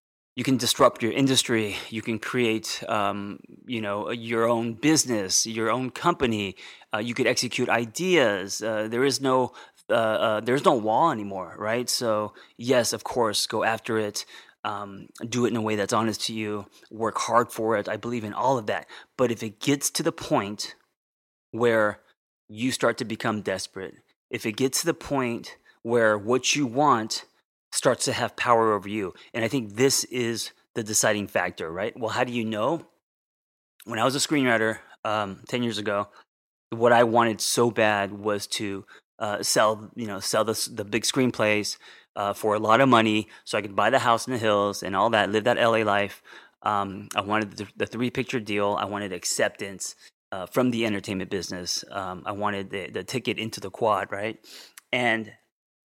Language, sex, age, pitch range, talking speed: English, male, 30-49, 105-120 Hz, 190 wpm